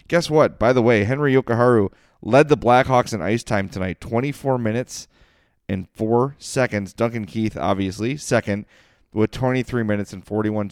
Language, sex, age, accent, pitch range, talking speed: English, male, 30-49, American, 105-125 Hz, 155 wpm